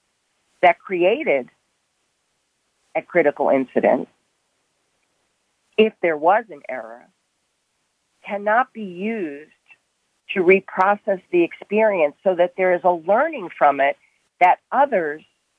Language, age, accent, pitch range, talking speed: English, 40-59, American, 155-205 Hz, 105 wpm